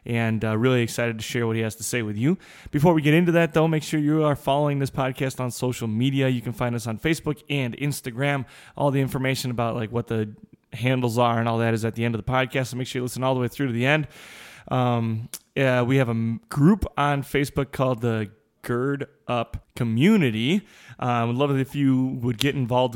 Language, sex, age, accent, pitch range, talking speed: English, male, 20-39, American, 115-140 Hz, 240 wpm